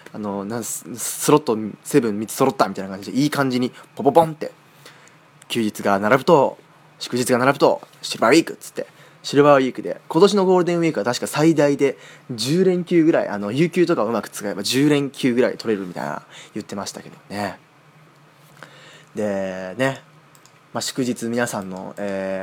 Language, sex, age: Japanese, male, 20-39